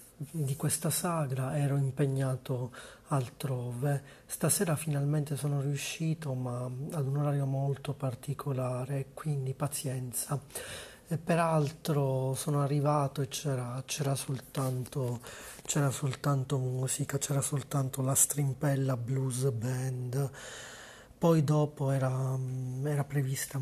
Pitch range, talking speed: 130-145 Hz, 95 wpm